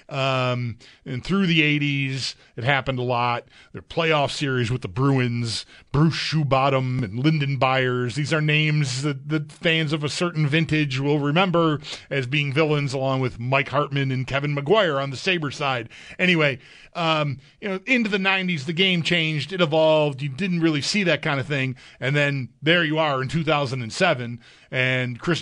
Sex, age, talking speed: male, 40-59, 175 wpm